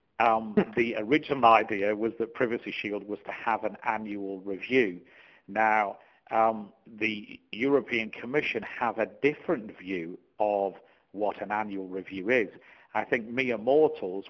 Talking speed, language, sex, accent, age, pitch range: 140 wpm, English, male, British, 50-69, 100-115 Hz